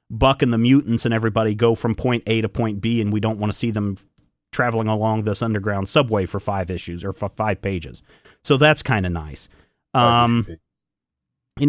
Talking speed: 200 wpm